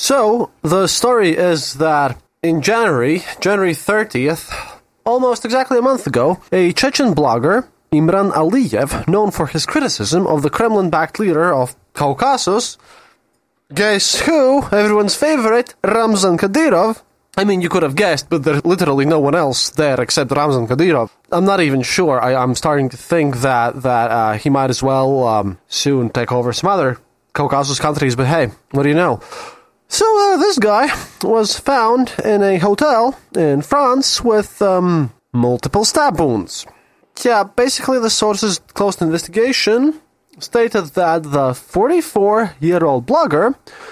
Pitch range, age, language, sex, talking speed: 150-230 Hz, 20-39, English, male, 150 wpm